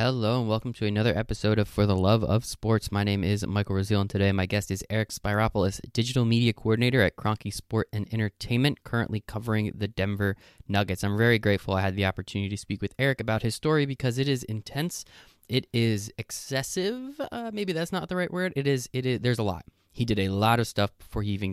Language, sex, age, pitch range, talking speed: English, male, 20-39, 100-120 Hz, 225 wpm